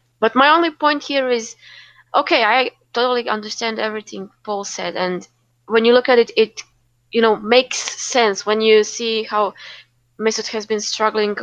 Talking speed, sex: 170 wpm, female